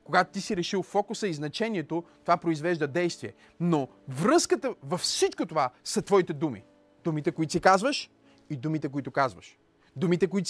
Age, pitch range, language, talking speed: 30-49, 160-260 Hz, Bulgarian, 160 wpm